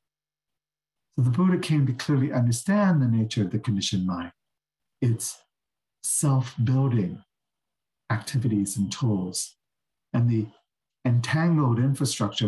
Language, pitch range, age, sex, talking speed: English, 110-135 Hz, 50-69, male, 105 wpm